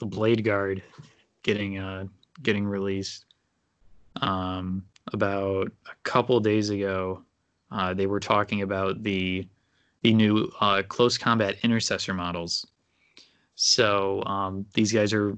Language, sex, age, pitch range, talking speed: English, male, 20-39, 95-110 Hz, 115 wpm